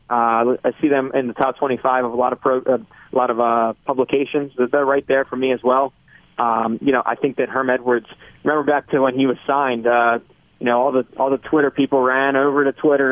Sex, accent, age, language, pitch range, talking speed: male, American, 20-39, English, 120-140 Hz, 245 wpm